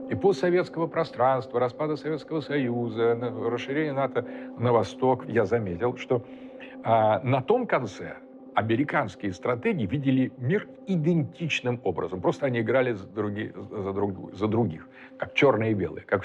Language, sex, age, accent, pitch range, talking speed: Russian, male, 50-69, native, 110-150 Hz, 125 wpm